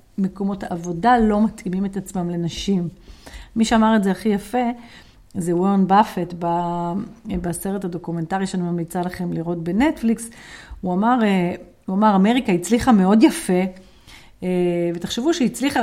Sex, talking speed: female, 125 wpm